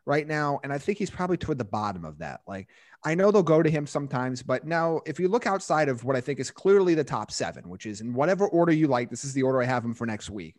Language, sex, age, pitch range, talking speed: English, male, 30-49, 115-145 Hz, 295 wpm